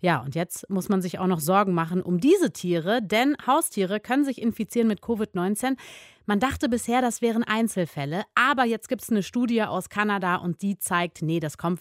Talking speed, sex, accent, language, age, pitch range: 205 wpm, female, German, German, 30-49, 180-245 Hz